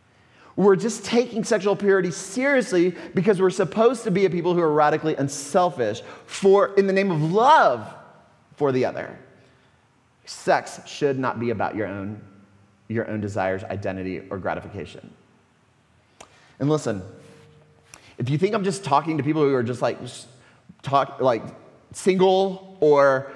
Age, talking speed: 30-49, 150 wpm